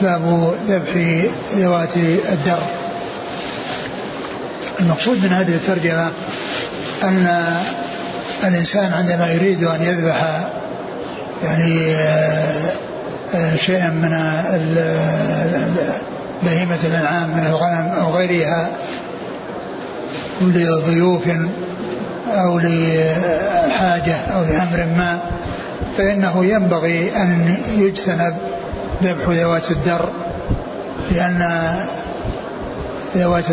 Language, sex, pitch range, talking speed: Arabic, male, 165-185 Hz, 70 wpm